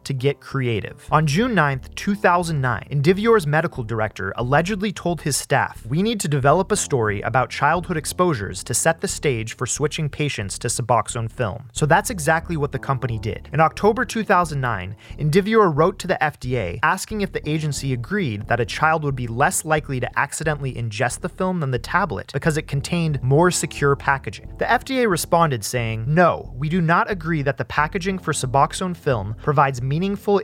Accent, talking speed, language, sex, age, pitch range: American, 180 wpm, English, male, 30-49, 125-175 Hz